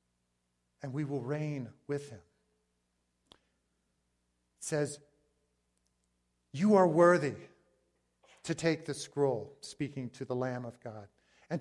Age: 50-69